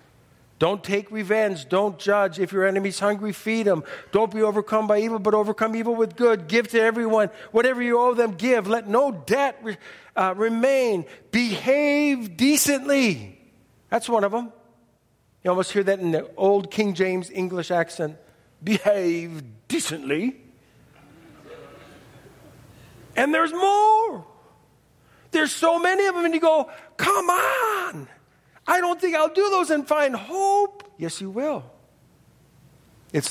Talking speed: 145 wpm